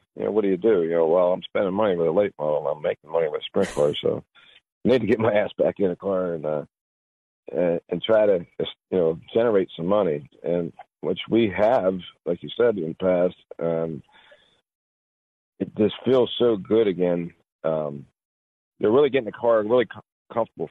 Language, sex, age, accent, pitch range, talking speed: English, male, 50-69, American, 85-110 Hz, 205 wpm